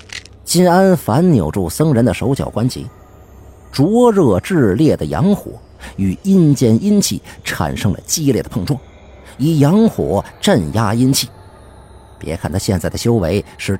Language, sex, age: Chinese, male, 50-69